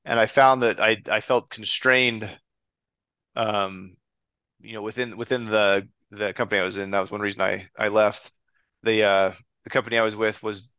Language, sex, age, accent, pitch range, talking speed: English, male, 20-39, American, 100-115 Hz, 190 wpm